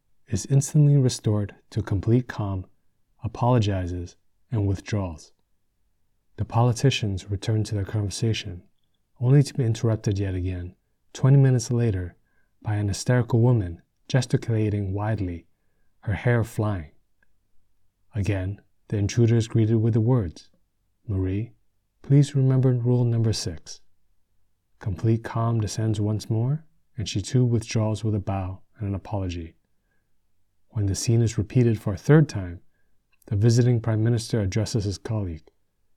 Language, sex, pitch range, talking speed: English, male, 95-120 Hz, 130 wpm